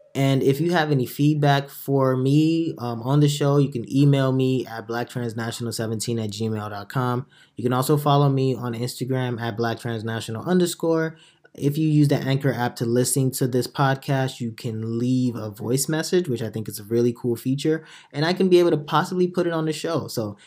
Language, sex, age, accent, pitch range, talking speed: English, male, 20-39, American, 120-155 Hz, 200 wpm